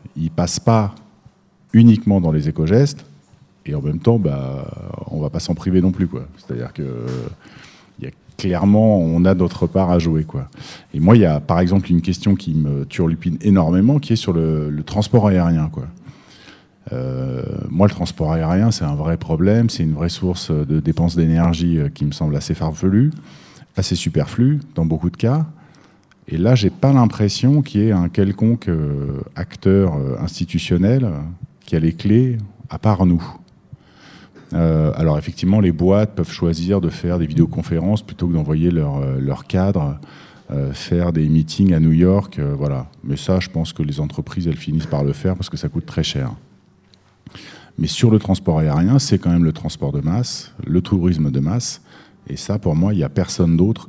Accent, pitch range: French, 80-100 Hz